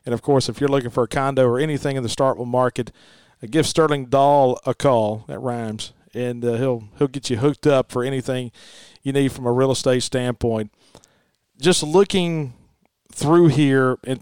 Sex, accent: male, American